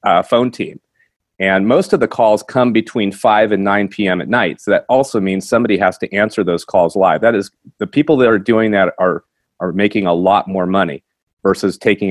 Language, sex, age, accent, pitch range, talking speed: English, male, 40-59, American, 95-125 Hz, 220 wpm